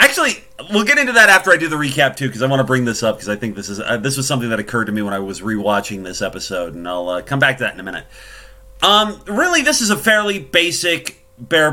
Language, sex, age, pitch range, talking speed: English, male, 30-49, 125-175 Hz, 280 wpm